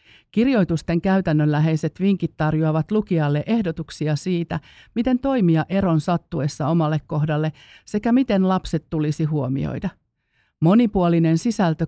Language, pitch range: Finnish, 155-190 Hz